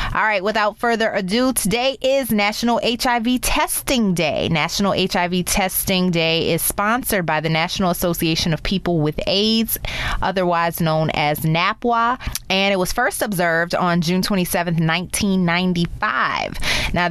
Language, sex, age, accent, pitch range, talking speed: English, female, 20-39, American, 170-230 Hz, 135 wpm